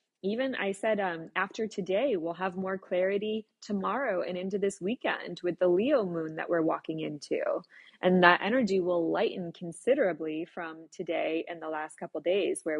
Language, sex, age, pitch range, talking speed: English, female, 20-39, 175-220 Hz, 175 wpm